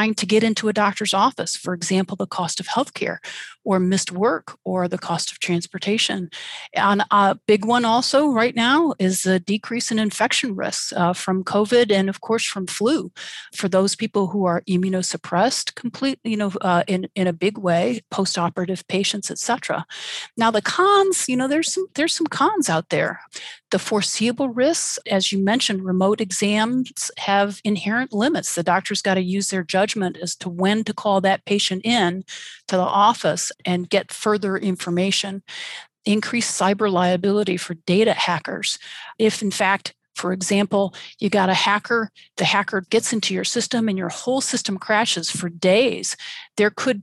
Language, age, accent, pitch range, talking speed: English, 40-59, American, 185-225 Hz, 170 wpm